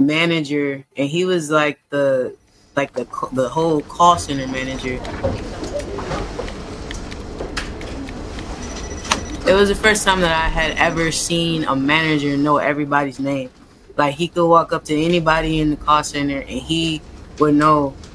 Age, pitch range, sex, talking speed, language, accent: 20-39, 145-175 Hz, female, 140 wpm, English, American